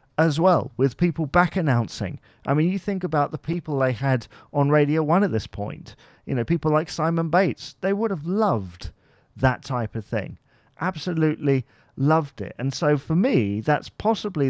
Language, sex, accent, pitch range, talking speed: English, male, British, 115-150 Hz, 180 wpm